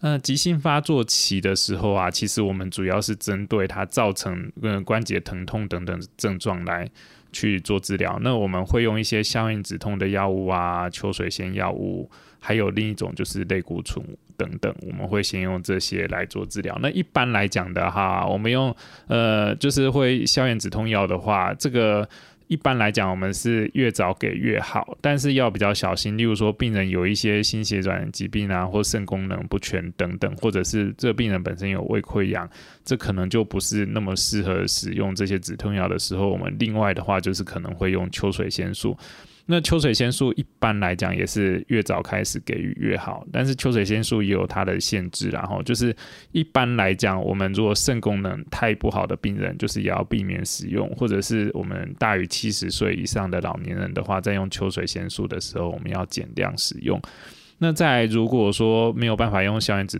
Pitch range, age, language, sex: 95-115 Hz, 20-39, Chinese, male